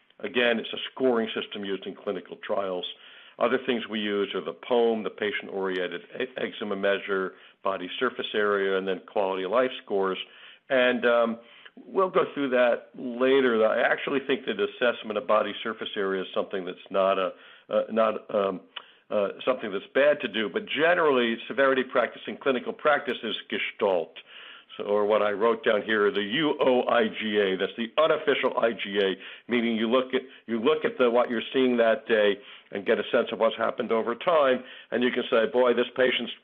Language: English